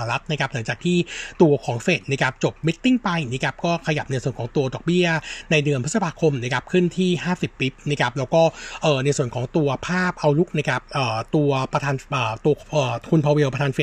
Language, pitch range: Thai, 140-175 Hz